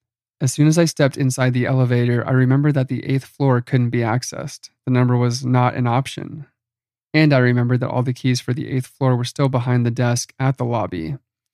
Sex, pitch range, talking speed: male, 120-135 Hz, 220 wpm